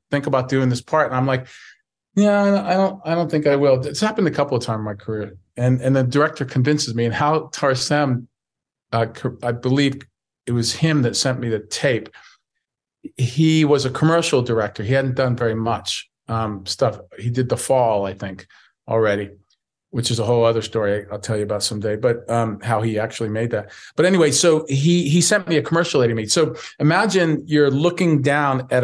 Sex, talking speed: male, 205 wpm